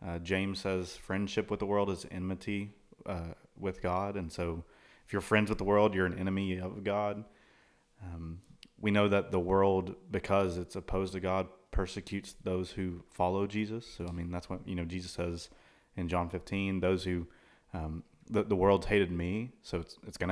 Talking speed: 190 wpm